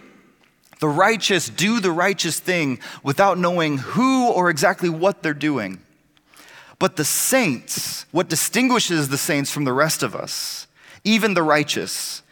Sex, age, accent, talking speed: male, 30-49, American, 140 wpm